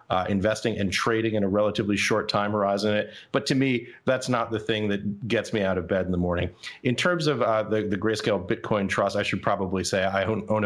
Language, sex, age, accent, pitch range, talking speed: English, male, 30-49, American, 100-110 Hz, 235 wpm